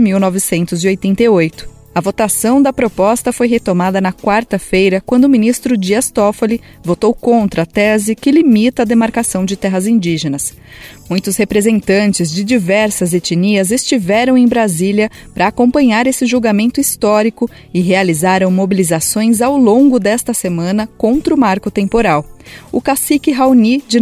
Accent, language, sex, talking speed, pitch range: Brazilian, Portuguese, female, 130 wpm, 185-240 Hz